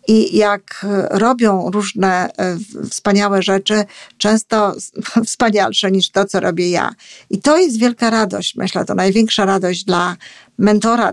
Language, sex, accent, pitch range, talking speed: Polish, female, native, 190-220 Hz, 130 wpm